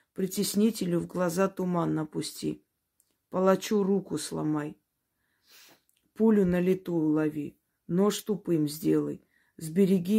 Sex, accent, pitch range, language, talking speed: female, native, 160-190 Hz, Russian, 95 wpm